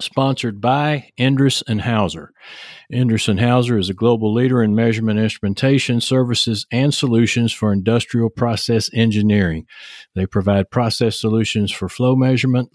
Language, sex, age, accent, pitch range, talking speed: English, male, 50-69, American, 105-130 Hz, 135 wpm